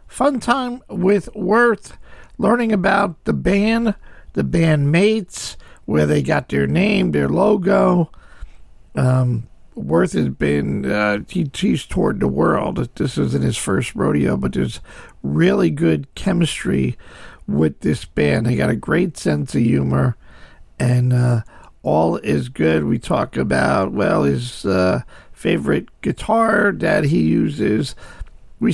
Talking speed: 135 wpm